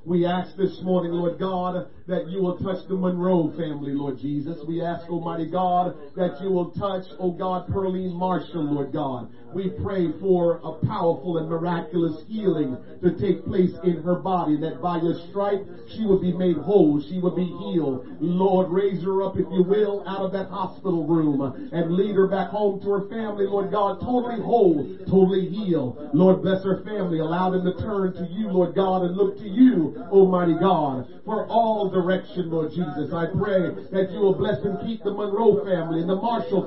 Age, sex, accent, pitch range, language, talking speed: 40-59, male, American, 175-210 Hz, English, 195 wpm